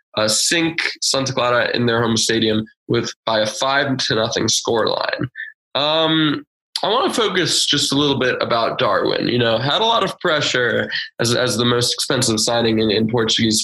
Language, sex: English, male